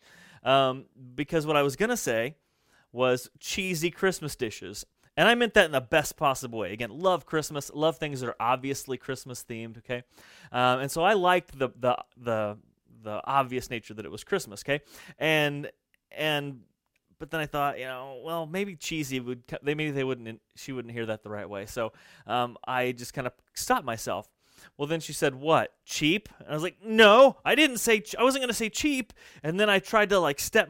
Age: 30-49